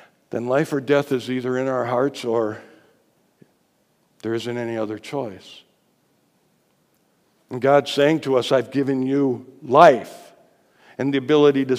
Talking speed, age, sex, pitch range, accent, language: 145 wpm, 60-79, male, 120-170 Hz, American, English